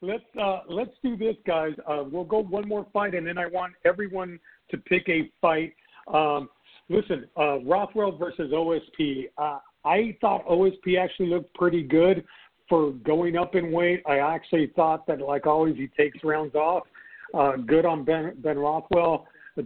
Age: 50-69